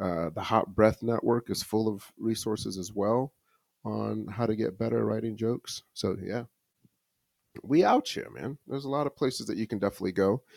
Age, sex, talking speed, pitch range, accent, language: 30-49, male, 195 wpm, 90-115 Hz, American, English